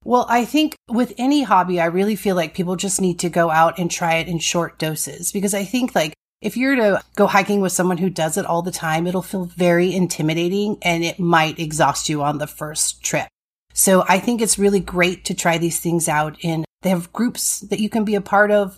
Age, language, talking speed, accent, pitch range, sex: 30-49, English, 235 wpm, American, 160-200 Hz, female